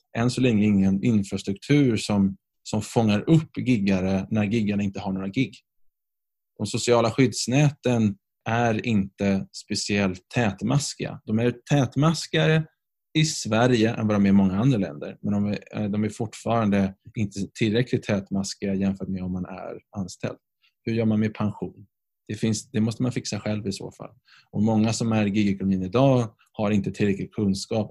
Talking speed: 165 wpm